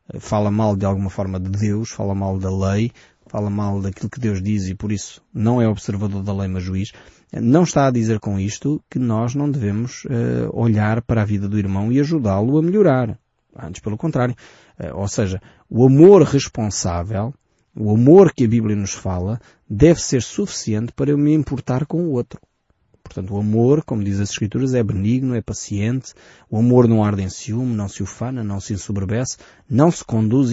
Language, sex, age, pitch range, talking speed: Portuguese, male, 20-39, 105-135 Hz, 195 wpm